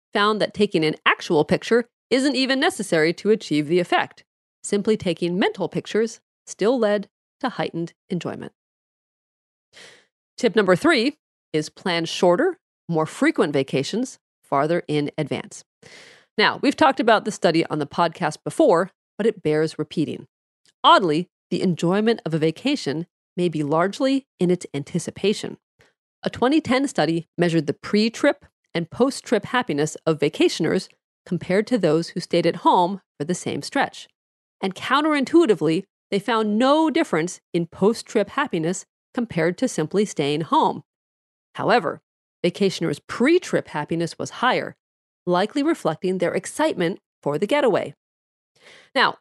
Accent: American